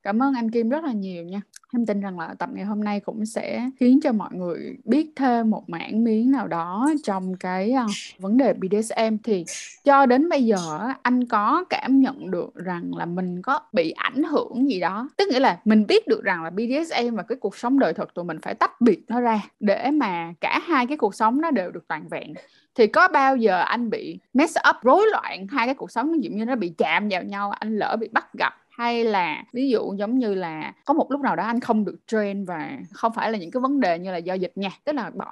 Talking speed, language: 245 wpm, Vietnamese